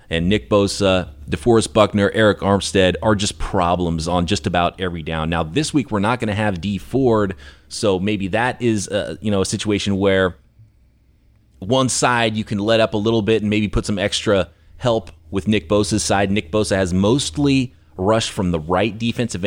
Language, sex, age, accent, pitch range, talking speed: English, male, 30-49, American, 95-115 Hz, 195 wpm